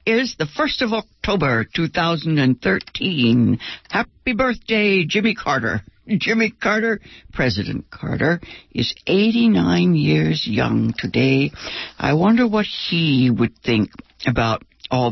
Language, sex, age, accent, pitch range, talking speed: English, female, 60-79, American, 130-220 Hz, 105 wpm